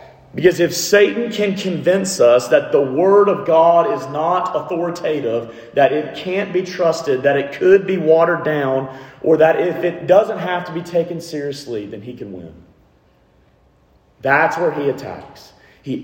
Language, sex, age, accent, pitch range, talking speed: English, male, 30-49, American, 135-185 Hz, 165 wpm